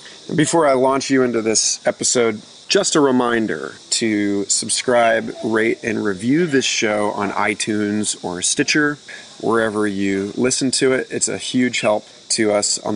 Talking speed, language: 155 wpm, English